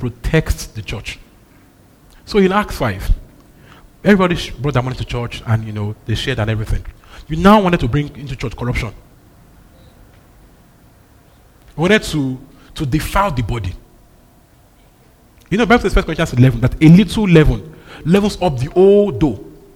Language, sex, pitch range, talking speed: English, male, 115-175 Hz, 160 wpm